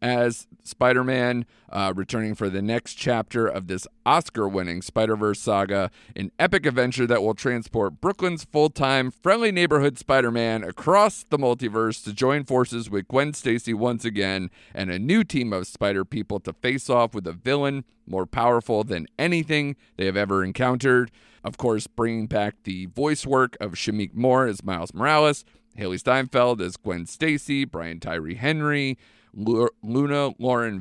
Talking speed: 150 wpm